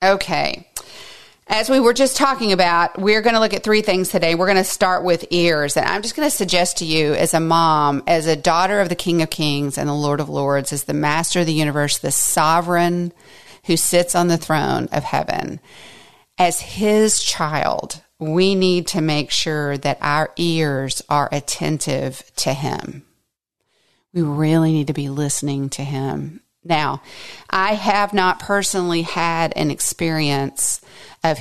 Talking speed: 175 wpm